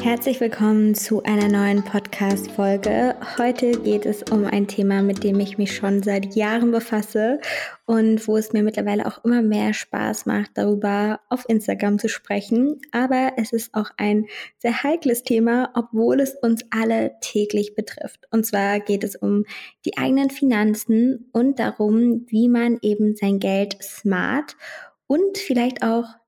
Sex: female